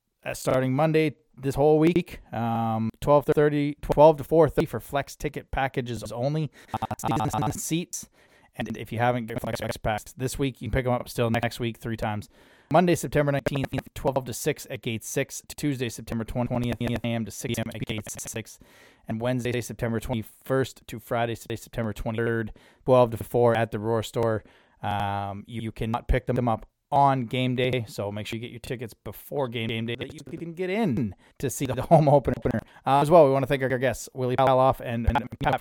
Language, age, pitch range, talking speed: English, 20-39, 115-140 Hz, 190 wpm